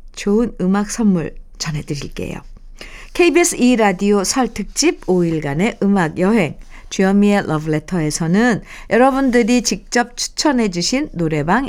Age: 50-69